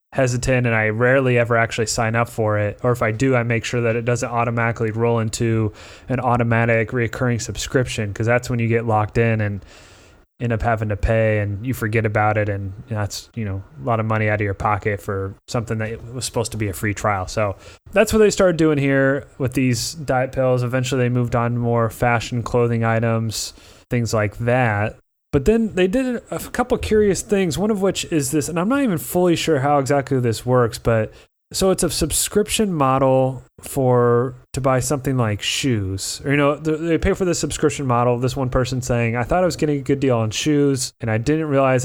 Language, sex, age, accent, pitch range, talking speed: English, male, 20-39, American, 110-140 Hz, 220 wpm